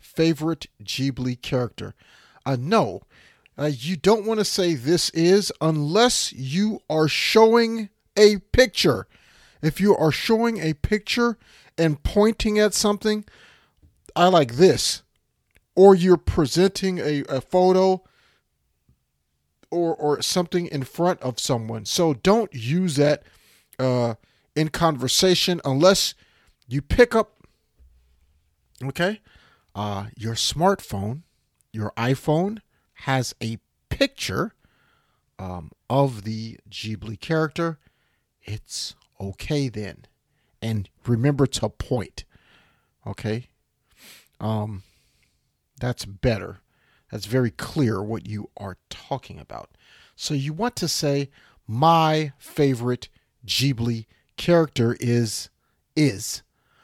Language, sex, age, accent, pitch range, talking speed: English, male, 40-59, American, 110-180 Hz, 105 wpm